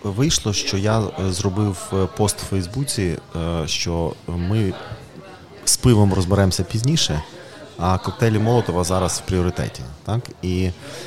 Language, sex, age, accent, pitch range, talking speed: Ukrainian, male, 30-49, native, 90-110 Hz, 110 wpm